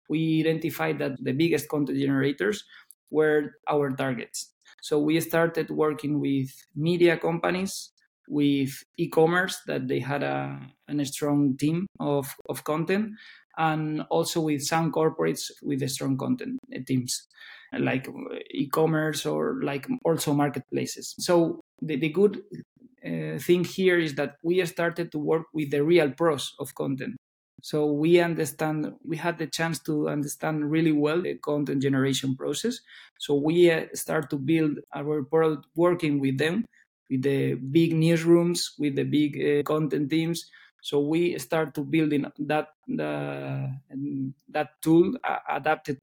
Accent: Spanish